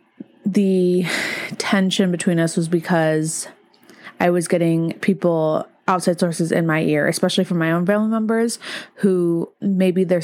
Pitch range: 165-195 Hz